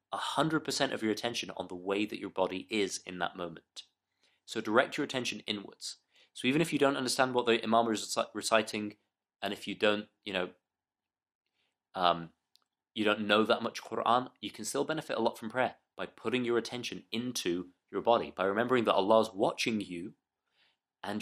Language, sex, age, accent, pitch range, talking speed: English, male, 30-49, British, 100-125 Hz, 190 wpm